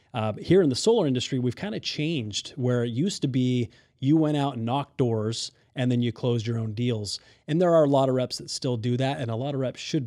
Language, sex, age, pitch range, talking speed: English, male, 30-49, 115-130 Hz, 270 wpm